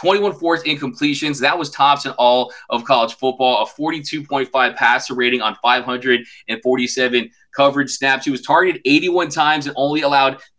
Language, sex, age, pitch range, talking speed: English, male, 20-39, 130-155 Hz, 155 wpm